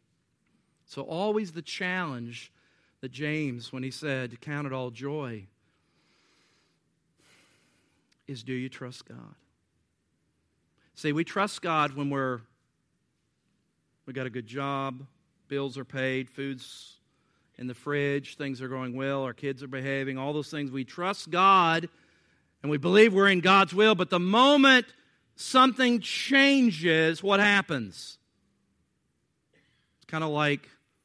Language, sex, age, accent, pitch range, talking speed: English, male, 50-69, American, 130-175 Hz, 135 wpm